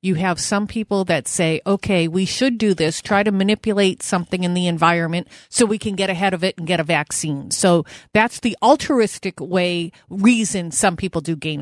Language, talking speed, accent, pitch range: English, 200 wpm, American, 170-210 Hz